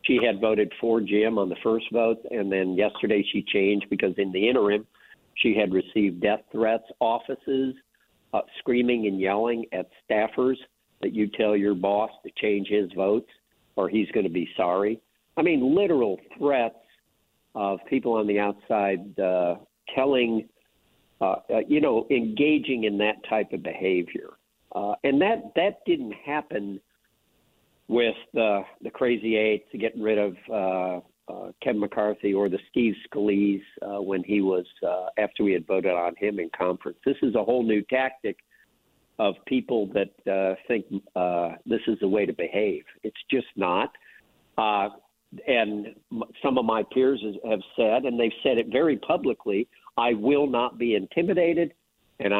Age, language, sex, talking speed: 50-69, English, male, 165 wpm